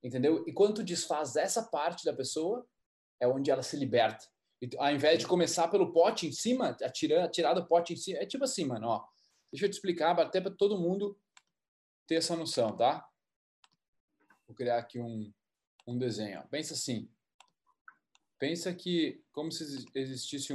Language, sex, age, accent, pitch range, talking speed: Portuguese, male, 20-39, Brazilian, 125-180 Hz, 175 wpm